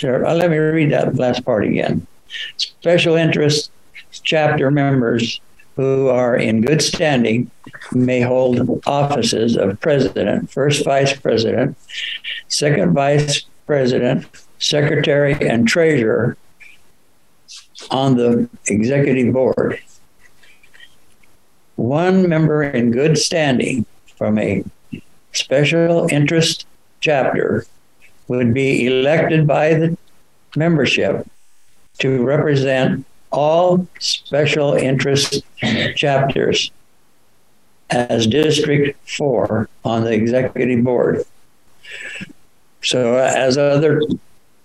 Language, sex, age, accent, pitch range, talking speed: English, male, 60-79, American, 125-155 Hz, 90 wpm